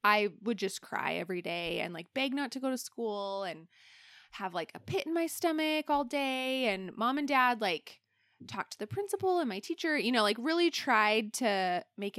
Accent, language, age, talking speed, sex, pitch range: American, English, 20-39, 210 wpm, female, 185-255 Hz